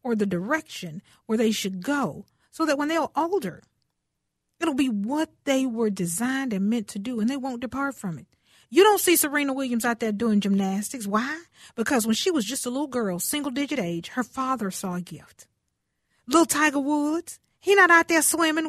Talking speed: 200 wpm